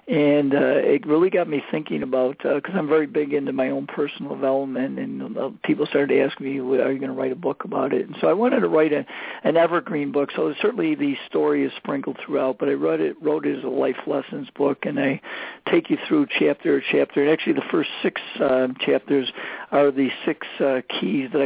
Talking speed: 230 wpm